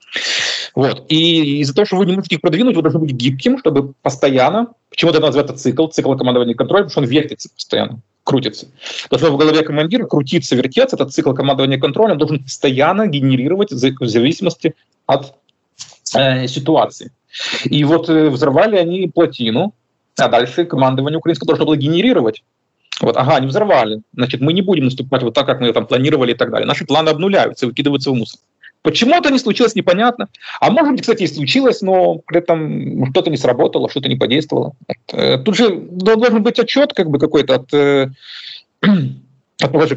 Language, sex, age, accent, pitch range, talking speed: Ukrainian, male, 30-49, native, 130-175 Hz, 175 wpm